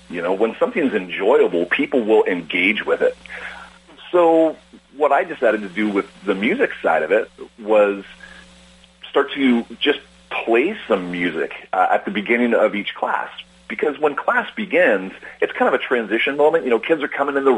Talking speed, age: 180 wpm, 40-59